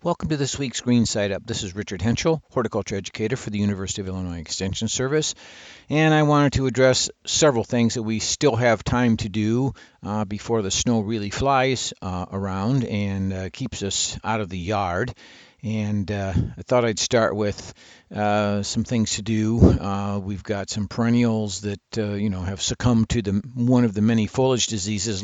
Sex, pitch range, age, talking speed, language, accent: male, 100-115 Hz, 50-69, 195 wpm, English, American